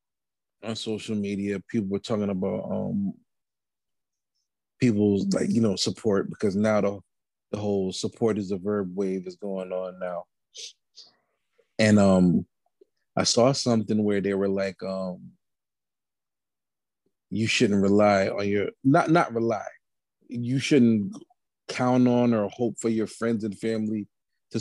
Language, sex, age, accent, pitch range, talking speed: English, male, 30-49, American, 105-145 Hz, 140 wpm